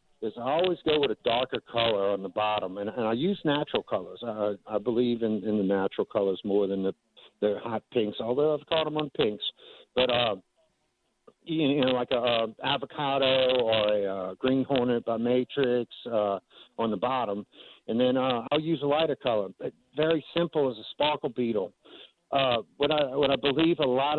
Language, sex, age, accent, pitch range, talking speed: English, male, 50-69, American, 110-140 Hz, 195 wpm